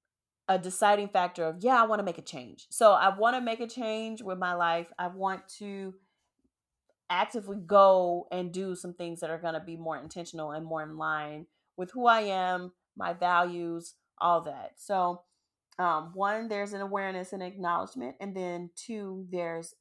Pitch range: 170-210 Hz